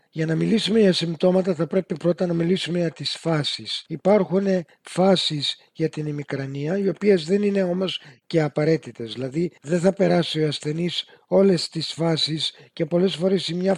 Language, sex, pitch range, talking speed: Greek, male, 155-190 Hz, 170 wpm